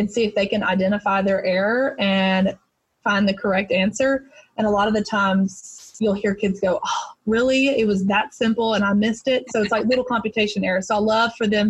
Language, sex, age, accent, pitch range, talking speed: English, female, 20-39, American, 195-220 Hz, 225 wpm